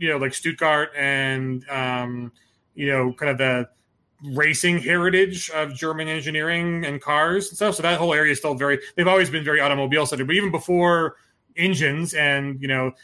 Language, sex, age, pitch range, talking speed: English, male, 30-49, 135-155 Hz, 180 wpm